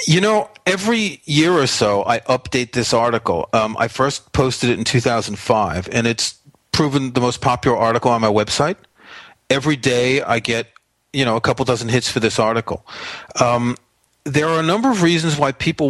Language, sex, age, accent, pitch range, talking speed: English, male, 40-59, American, 125-165 Hz, 185 wpm